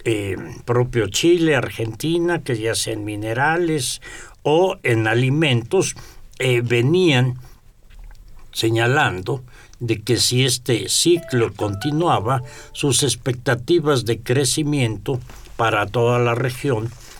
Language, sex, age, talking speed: Spanish, male, 60-79, 100 wpm